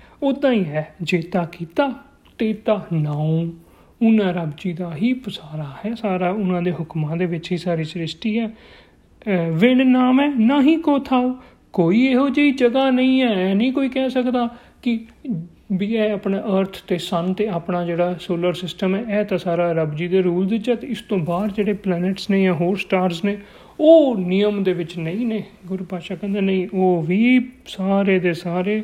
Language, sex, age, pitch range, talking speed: Punjabi, male, 40-59, 175-215 Hz, 160 wpm